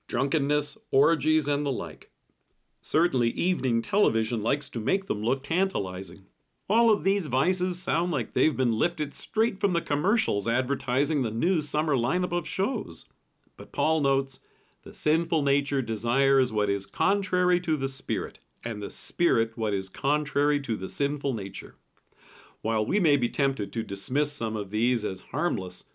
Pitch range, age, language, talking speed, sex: 115-155 Hz, 50-69, English, 160 wpm, male